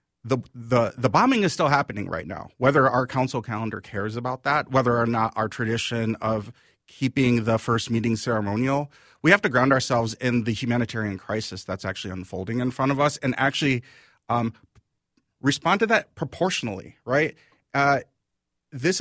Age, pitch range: 30-49, 110-140 Hz